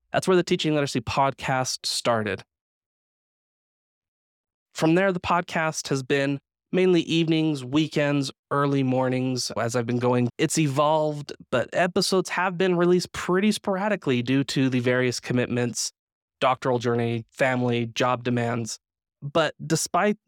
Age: 20-39